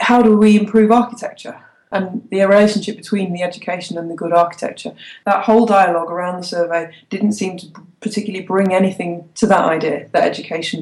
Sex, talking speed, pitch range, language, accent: female, 175 wpm, 175-215 Hz, English, British